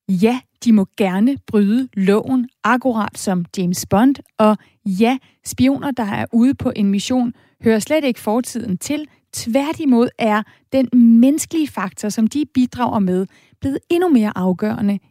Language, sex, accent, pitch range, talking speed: Danish, female, native, 195-250 Hz, 145 wpm